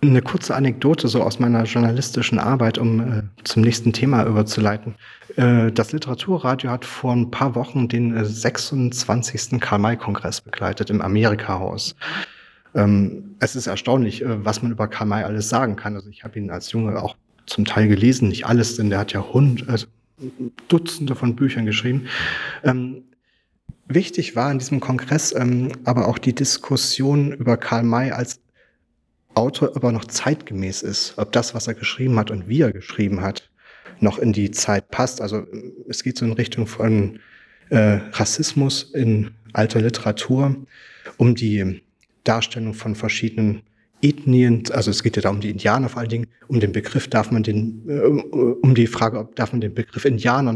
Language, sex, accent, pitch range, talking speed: German, male, German, 110-130 Hz, 175 wpm